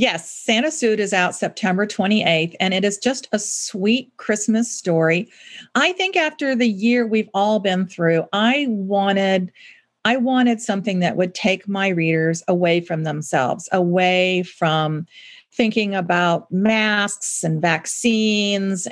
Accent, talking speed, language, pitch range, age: American, 140 wpm, English, 170-215 Hz, 50-69